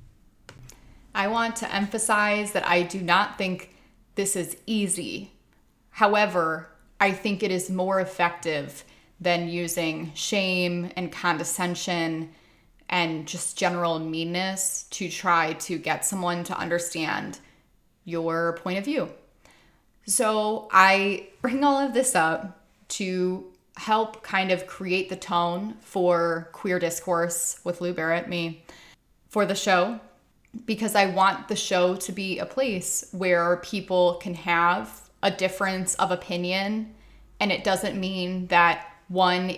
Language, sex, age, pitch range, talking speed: English, female, 20-39, 170-195 Hz, 130 wpm